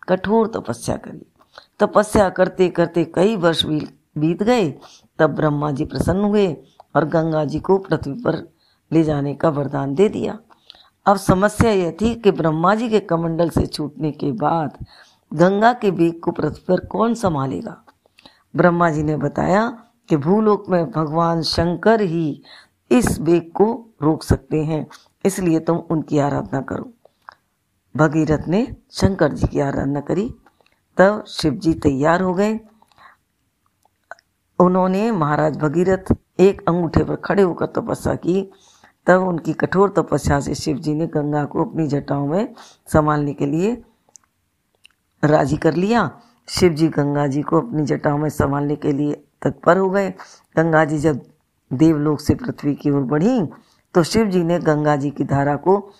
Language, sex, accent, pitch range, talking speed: Hindi, female, native, 150-190 Hz, 160 wpm